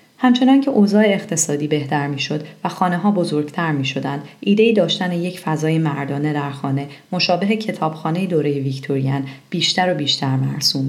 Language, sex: Persian, female